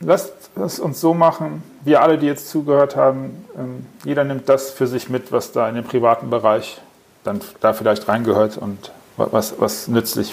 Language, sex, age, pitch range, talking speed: German, male, 40-59, 125-170 Hz, 180 wpm